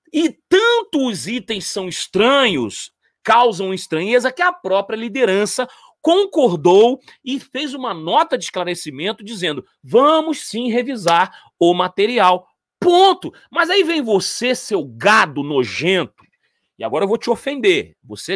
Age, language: 30-49, Portuguese